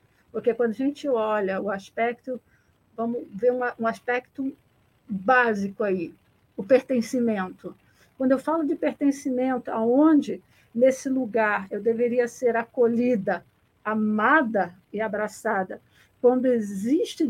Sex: female